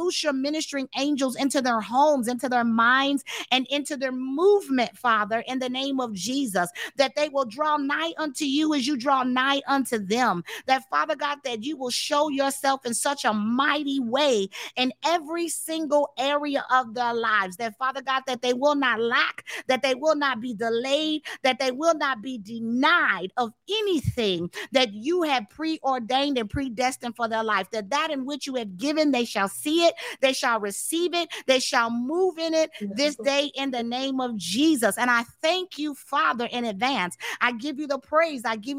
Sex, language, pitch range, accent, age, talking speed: female, English, 235-290 Hz, American, 40-59, 190 wpm